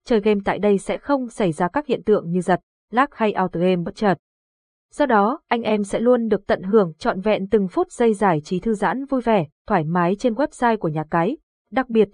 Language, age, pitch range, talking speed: Vietnamese, 20-39, 185-235 Hz, 235 wpm